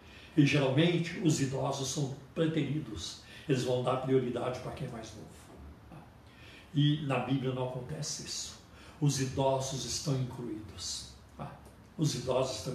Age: 60-79